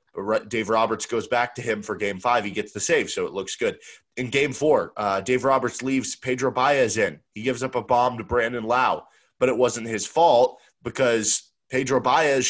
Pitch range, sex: 110-135 Hz, male